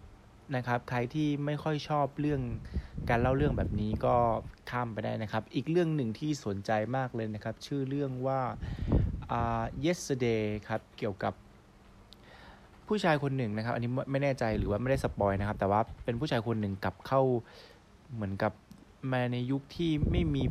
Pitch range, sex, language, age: 100-125 Hz, male, Thai, 20-39